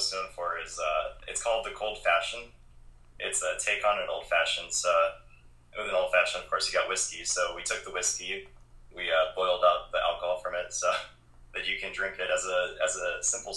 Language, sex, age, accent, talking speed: English, male, 30-49, American, 225 wpm